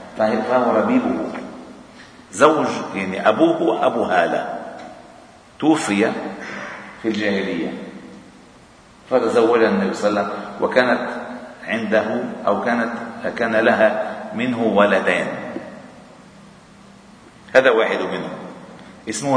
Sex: male